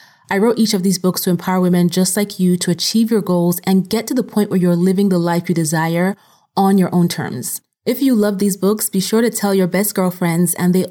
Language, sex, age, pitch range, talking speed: English, female, 30-49, 175-205 Hz, 255 wpm